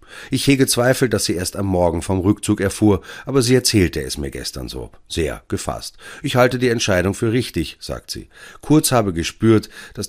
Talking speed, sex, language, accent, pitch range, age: 190 wpm, male, German, German, 85-115 Hz, 40-59